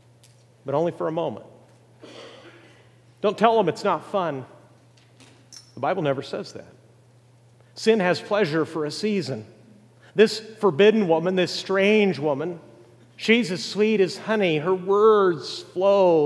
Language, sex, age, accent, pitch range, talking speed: English, male, 50-69, American, 140-195 Hz, 135 wpm